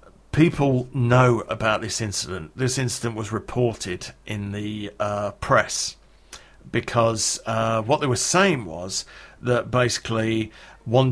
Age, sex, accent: 50-69, male, British